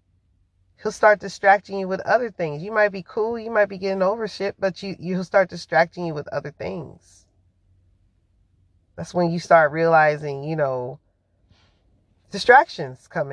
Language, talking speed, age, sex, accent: English, 160 wpm, 30-49, female, American